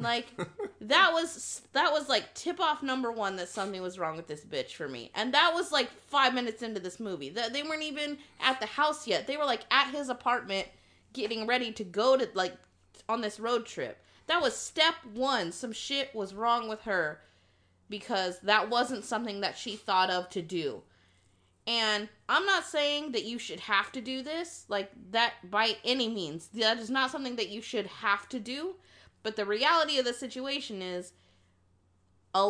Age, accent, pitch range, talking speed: 20-39, American, 205-285 Hz, 190 wpm